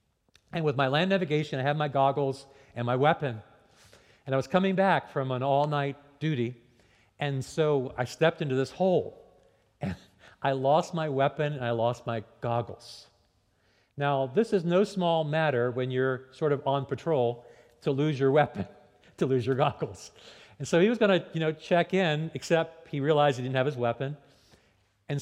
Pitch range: 105-150 Hz